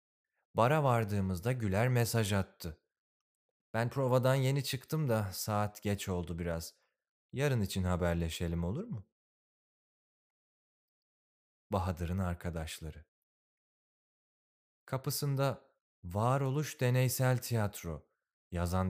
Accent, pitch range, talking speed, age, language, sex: native, 85-115 Hz, 85 wpm, 30-49, Turkish, male